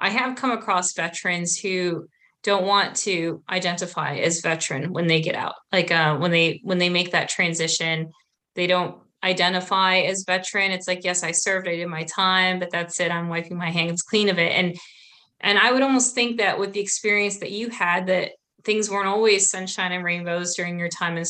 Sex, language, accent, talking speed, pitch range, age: female, English, American, 205 wpm, 170-195 Hz, 20-39